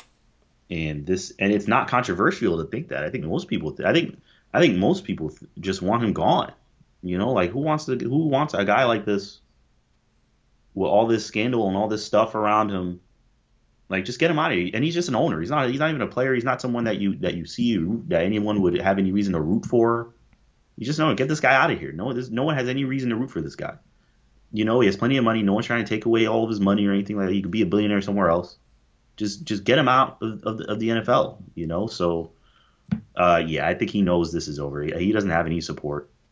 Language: English